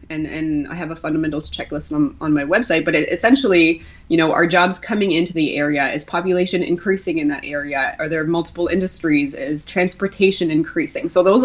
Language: English